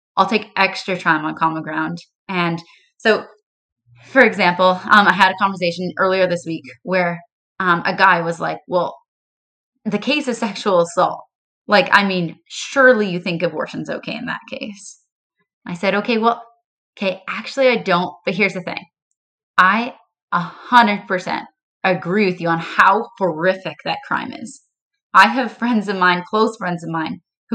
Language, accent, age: English, American, 20-39